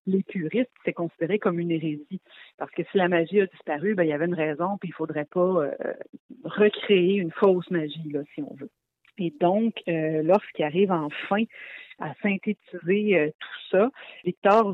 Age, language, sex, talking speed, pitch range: 40-59, French, female, 180 wpm, 165-205 Hz